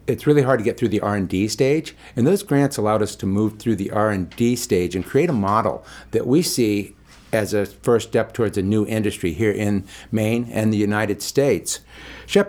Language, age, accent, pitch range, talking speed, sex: English, 50-69, American, 95-115 Hz, 205 wpm, male